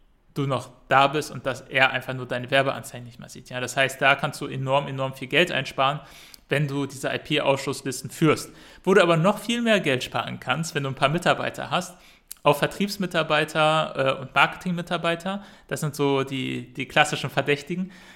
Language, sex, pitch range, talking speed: German, male, 135-165 Hz, 185 wpm